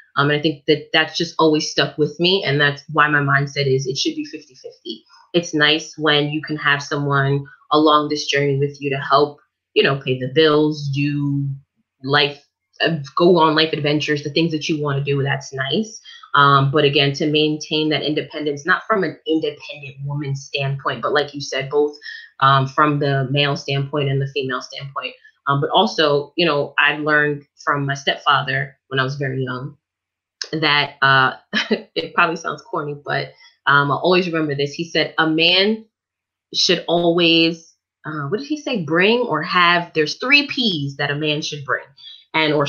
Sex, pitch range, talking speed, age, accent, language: female, 140-165 Hz, 185 wpm, 20-39, American, English